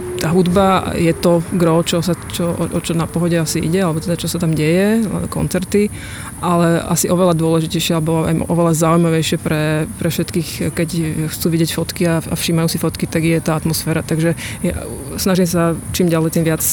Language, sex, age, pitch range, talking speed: Slovak, female, 20-39, 155-175 Hz, 165 wpm